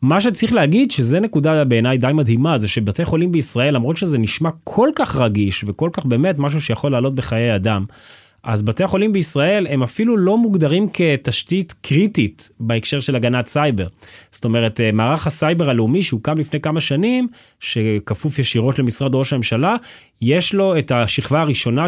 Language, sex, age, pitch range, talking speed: Hebrew, male, 20-39, 120-170 Hz, 165 wpm